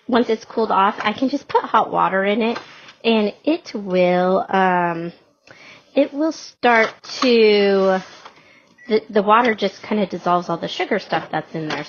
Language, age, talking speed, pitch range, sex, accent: English, 30-49, 170 wpm, 190-240 Hz, female, American